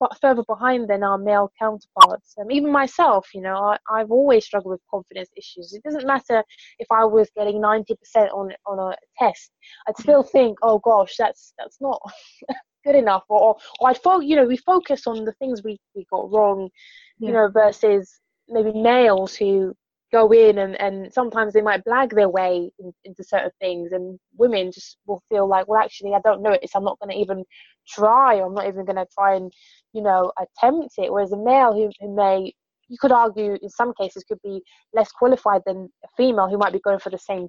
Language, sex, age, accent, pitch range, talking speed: English, female, 20-39, British, 195-240 Hz, 205 wpm